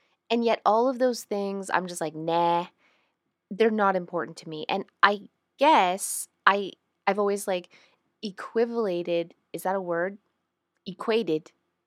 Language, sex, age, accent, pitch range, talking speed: English, female, 20-39, American, 175-225 Hz, 145 wpm